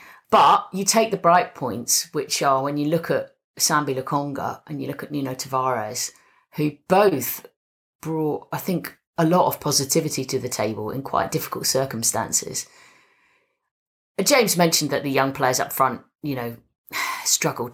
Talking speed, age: 160 wpm, 30-49